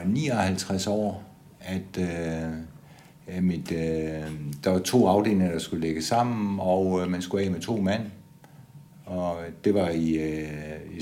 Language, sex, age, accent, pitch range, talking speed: Danish, male, 60-79, native, 90-150 Hz, 125 wpm